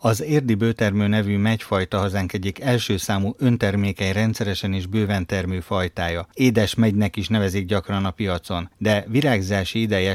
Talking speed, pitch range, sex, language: 150 wpm, 100-115 Hz, male, Hungarian